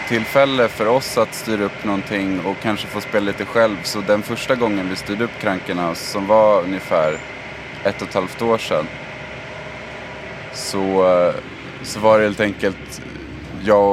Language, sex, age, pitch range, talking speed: Swedish, male, 20-39, 95-110 Hz, 160 wpm